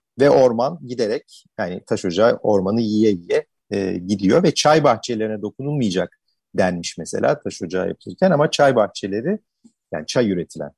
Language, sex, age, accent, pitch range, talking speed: Turkish, male, 50-69, native, 95-135 Hz, 145 wpm